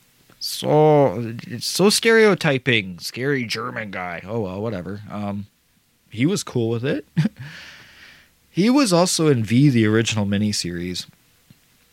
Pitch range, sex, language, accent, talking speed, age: 105-145 Hz, male, English, American, 120 wpm, 20-39